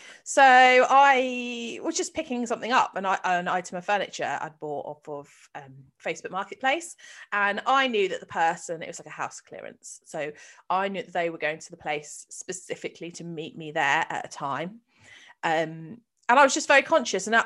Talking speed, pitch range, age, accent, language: 200 wpm, 170-235 Hz, 30-49, British, English